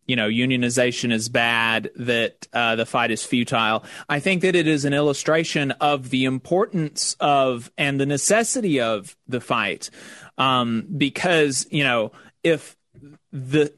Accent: American